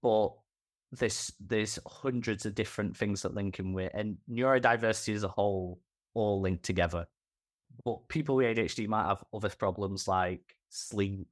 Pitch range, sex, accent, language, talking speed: 100-125 Hz, male, British, English, 150 wpm